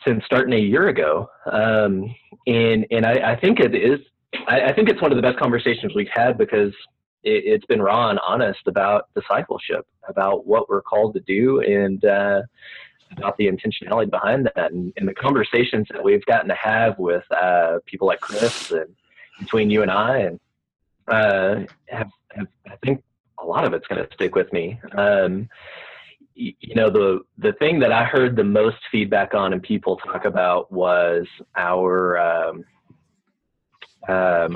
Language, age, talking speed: English, 30-49, 175 wpm